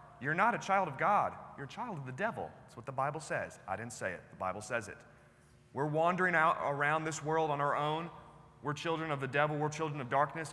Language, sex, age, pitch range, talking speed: English, male, 30-49, 140-185 Hz, 245 wpm